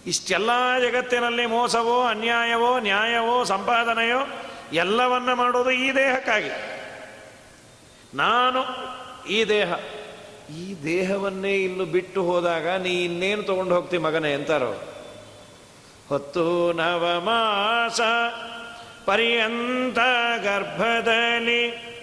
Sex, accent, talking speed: male, native, 80 wpm